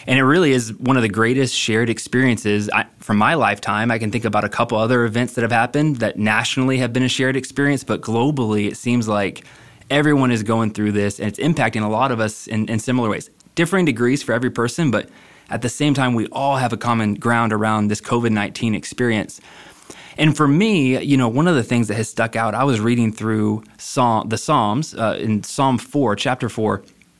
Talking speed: 215 wpm